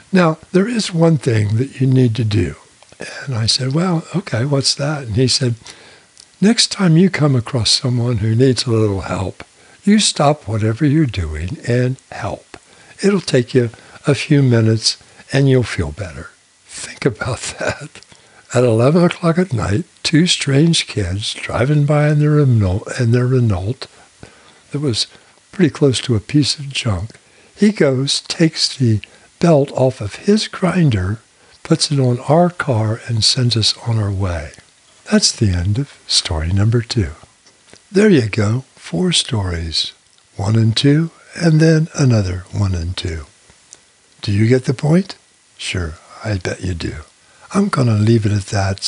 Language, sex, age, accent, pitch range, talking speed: English, male, 60-79, American, 105-150 Hz, 160 wpm